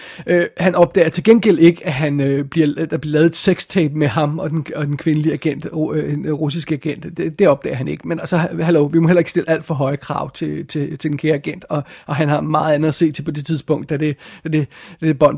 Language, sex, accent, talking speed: Danish, male, native, 275 wpm